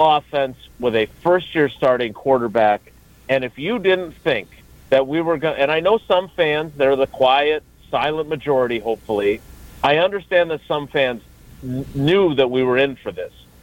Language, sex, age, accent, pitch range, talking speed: English, male, 40-59, American, 135-195 Hz, 165 wpm